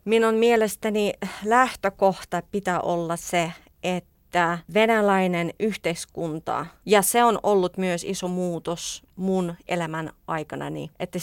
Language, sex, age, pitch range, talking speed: Finnish, female, 30-49, 170-210 Hz, 105 wpm